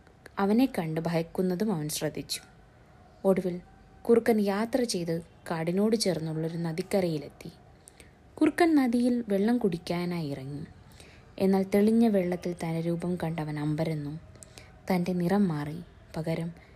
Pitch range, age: 165-205 Hz, 20-39